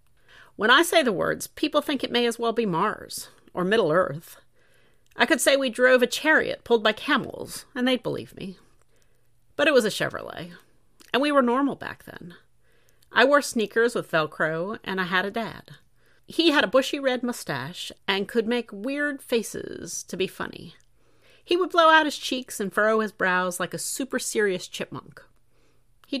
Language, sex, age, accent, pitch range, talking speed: English, female, 40-59, American, 180-260 Hz, 185 wpm